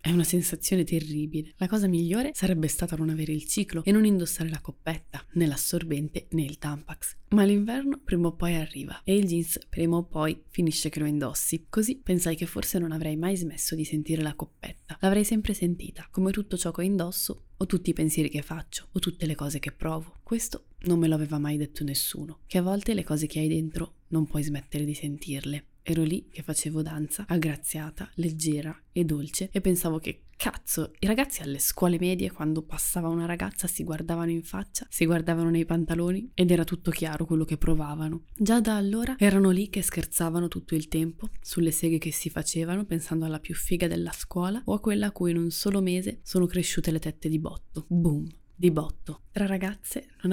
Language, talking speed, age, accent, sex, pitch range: Italian, 205 wpm, 20-39, native, female, 155-185 Hz